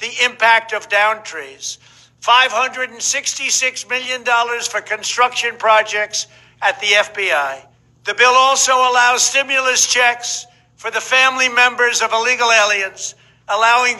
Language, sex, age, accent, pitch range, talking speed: English, male, 60-79, American, 210-245 Hz, 115 wpm